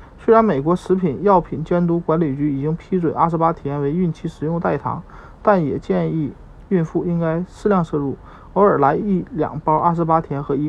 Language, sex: Chinese, male